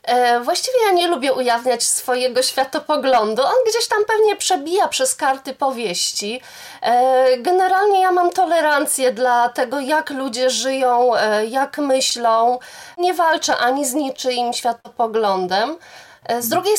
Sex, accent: female, native